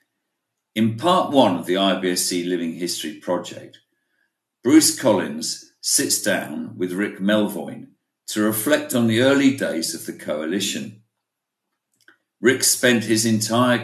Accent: British